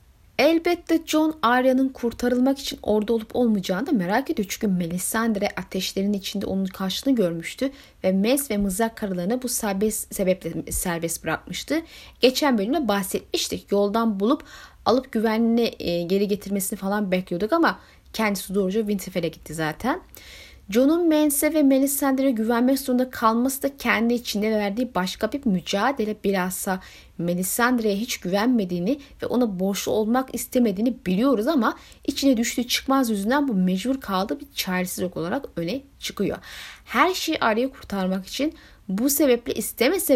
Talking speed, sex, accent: 135 wpm, female, native